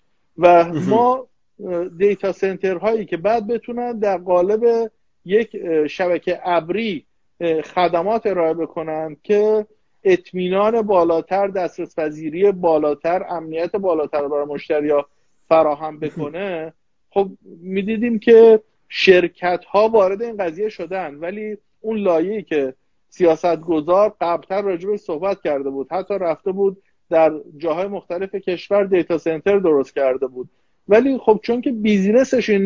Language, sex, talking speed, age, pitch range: Persian, male, 120 wpm, 50-69, 160-210 Hz